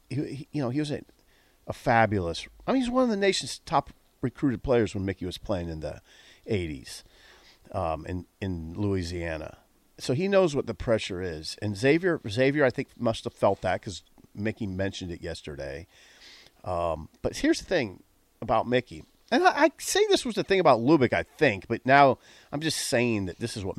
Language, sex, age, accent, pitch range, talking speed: English, male, 40-59, American, 100-145 Hz, 190 wpm